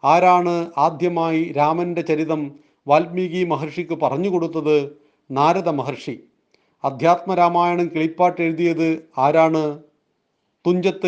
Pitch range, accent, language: 150-180 Hz, native, Malayalam